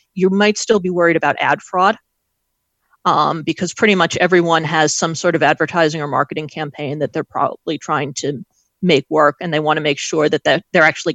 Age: 40-59